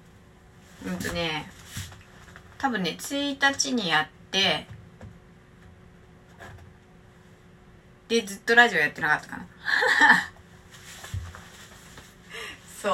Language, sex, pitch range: Japanese, female, 165-245 Hz